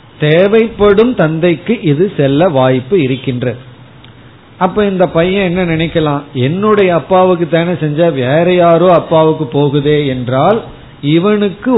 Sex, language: male, Tamil